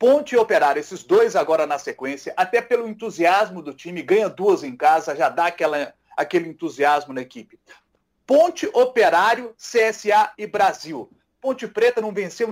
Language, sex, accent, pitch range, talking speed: Portuguese, male, Brazilian, 185-265 Hz, 160 wpm